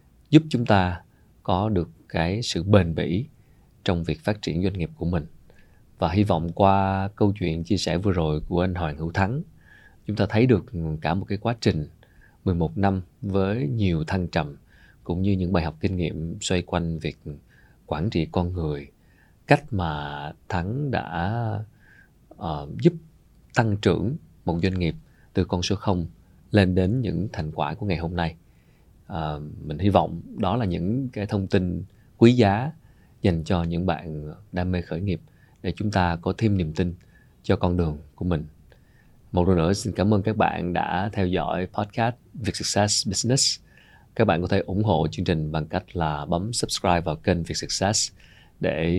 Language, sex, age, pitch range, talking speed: Vietnamese, male, 20-39, 85-105 Hz, 185 wpm